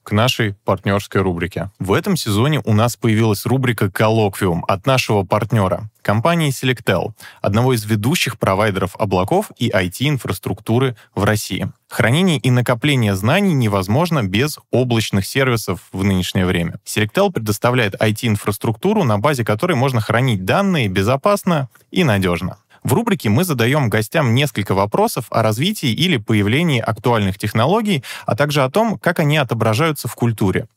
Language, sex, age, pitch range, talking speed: Russian, male, 20-39, 105-140 Hz, 140 wpm